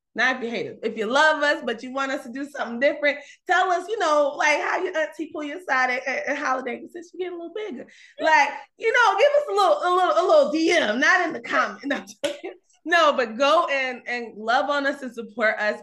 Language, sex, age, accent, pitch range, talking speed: English, female, 20-39, American, 205-290 Hz, 255 wpm